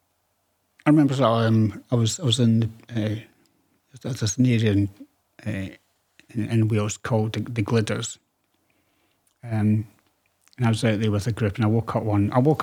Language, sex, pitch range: English, male, 110-130 Hz